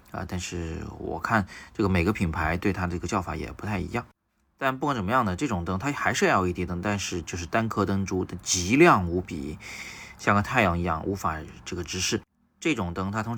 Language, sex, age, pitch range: Chinese, male, 30-49, 85-105 Hz